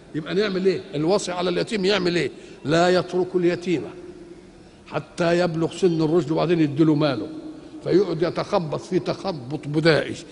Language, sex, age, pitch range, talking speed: Arabic, male, 50-69, 155-200 Hz, 135 wpm